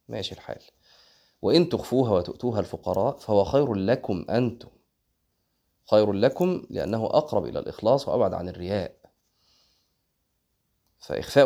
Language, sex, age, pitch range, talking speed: Arabic, male, 30-49, 95-120 Hz, 105 wpm